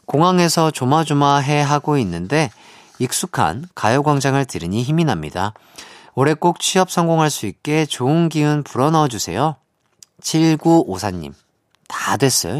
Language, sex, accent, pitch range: Korean, male, native, 105-155 Hz